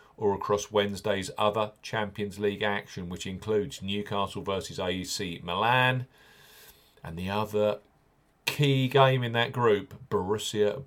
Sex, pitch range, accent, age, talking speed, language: male, 100-135 Hz, British, 40-59, 120 wpm, English